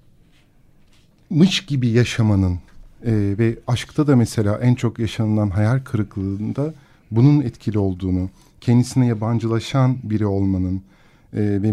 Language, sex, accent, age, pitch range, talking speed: Turkish, male, native, 50-69, 100-130 Hz, 115 wpm